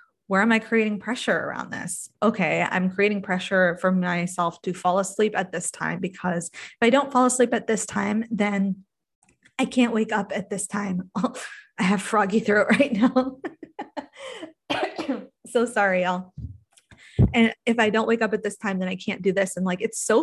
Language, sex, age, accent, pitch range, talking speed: English, female, 20-39, American, 185-240 Hz, 185 wpm